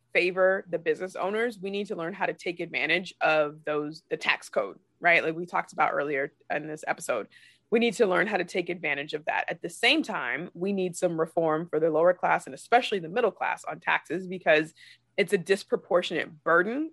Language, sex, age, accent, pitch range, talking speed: English, female, 20-39, American, 175-240 Hz, 215 wpm